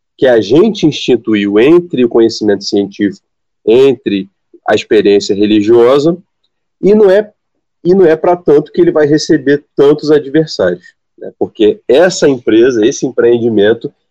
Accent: Brazilian